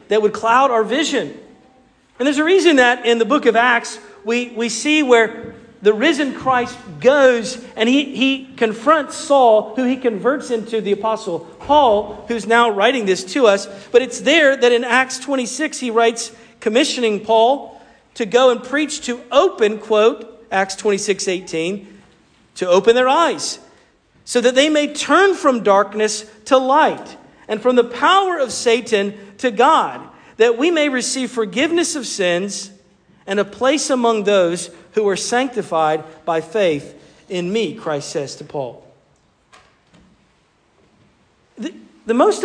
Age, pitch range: 40-59, 200-260 Hz